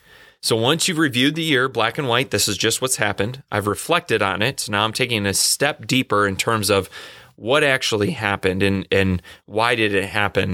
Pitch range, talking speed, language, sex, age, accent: 105-130 Hz, 210 wpm, English, male, 30-49, American